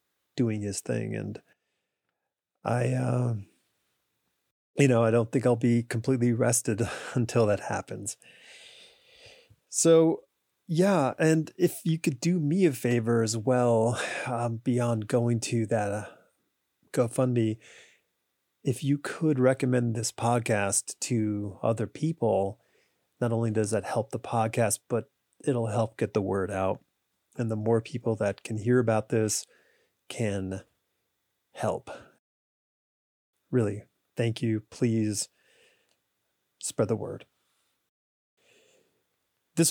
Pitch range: 110-135 Hz